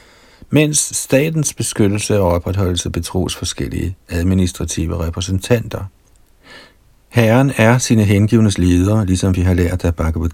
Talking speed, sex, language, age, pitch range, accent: 115 wpm, male, Danish, 60-79, 90-115 Hz, native